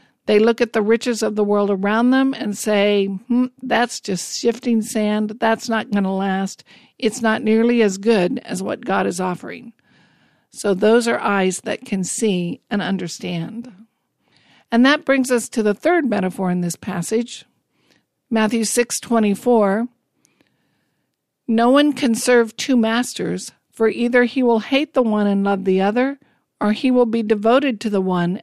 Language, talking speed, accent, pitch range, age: English, 170 wpm, American, 195-240 Hz, 50-69